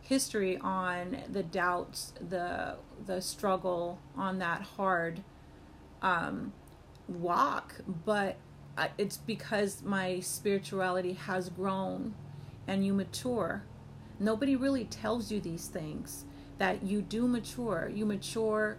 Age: 40-59